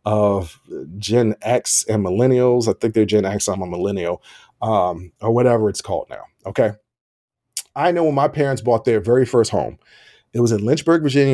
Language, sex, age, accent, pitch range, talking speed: English, male, 40-59, American, 110-145 Hz, 185 wpm